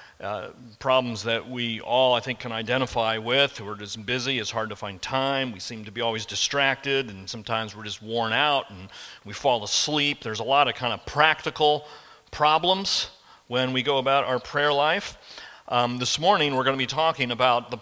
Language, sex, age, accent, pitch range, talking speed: English, male, 40-59, American, 115-145 Hz, 200 wpm